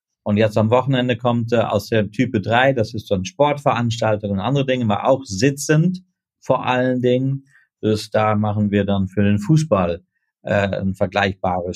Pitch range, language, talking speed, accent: 110-130 Hz, German, 180 wpm, German